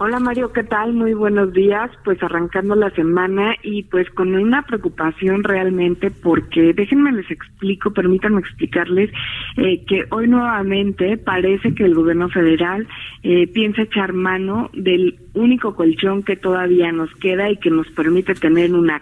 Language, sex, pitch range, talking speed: Spanish, female, 175-215 Hz, 155 wpm